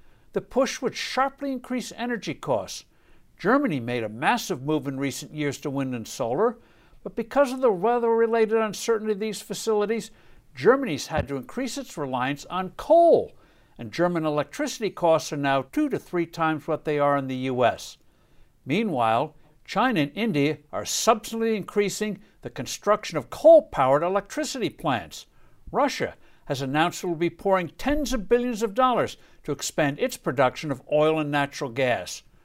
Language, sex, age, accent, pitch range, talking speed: English, male, 60-79, American, 140-225 Hz, 160 wpm